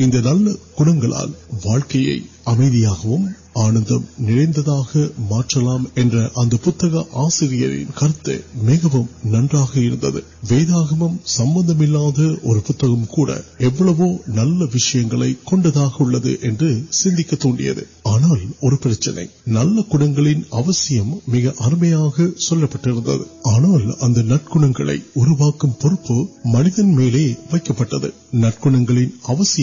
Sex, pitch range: male, 120-160 Hz